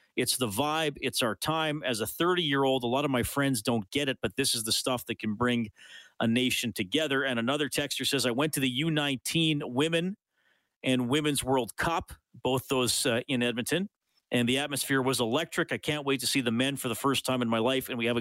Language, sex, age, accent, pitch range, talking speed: English, male, 40-59, American, 120-150 Hz, 225 wpm